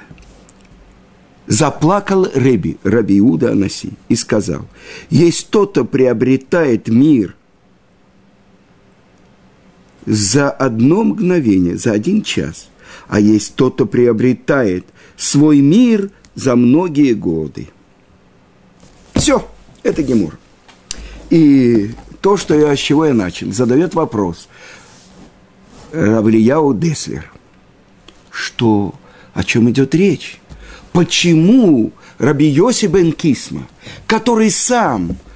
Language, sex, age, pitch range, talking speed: Russian, male, 50-69, 130-205 Hz, 85 wpm